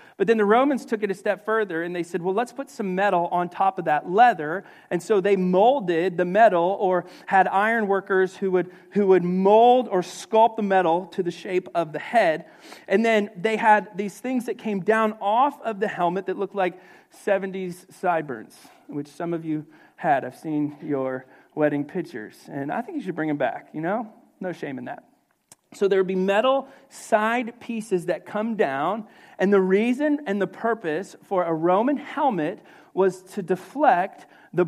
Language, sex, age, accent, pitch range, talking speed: English, male, 40-59, American, 180-225 Hz, 195 wpm